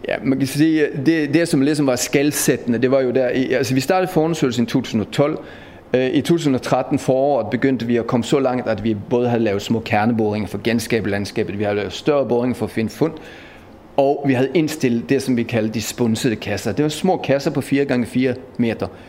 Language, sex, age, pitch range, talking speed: Danish, male, 40-59, 110-140 Hz, 210 wpm